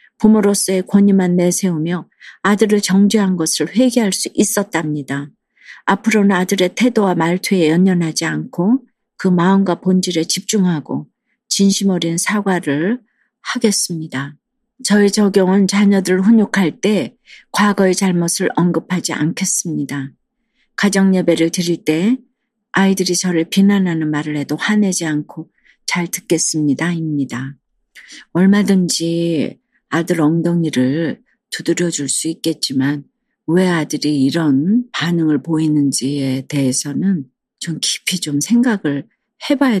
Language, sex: Korean, female